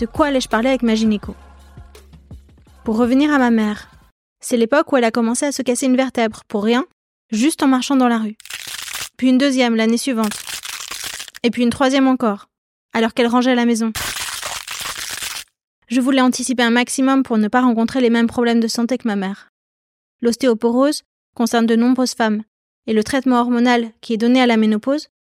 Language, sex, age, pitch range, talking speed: French, female, 20-39, 220-260 Hz, 185 wpm